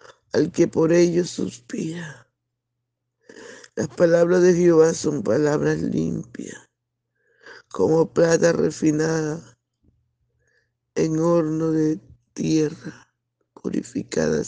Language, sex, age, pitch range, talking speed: Spanish, male, 60-79, 120-175 Hz, 85 wpm